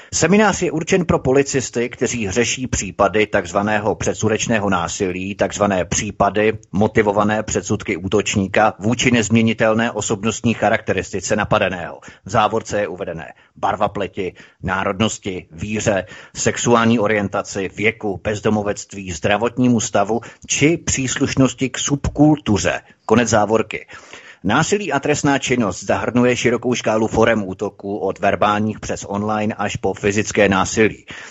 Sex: male